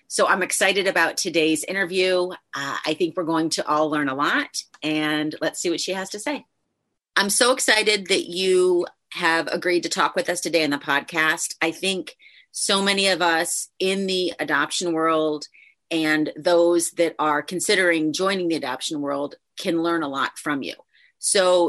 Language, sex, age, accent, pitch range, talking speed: English, female, 30-49, American, 155-195 Hz, 180 wpm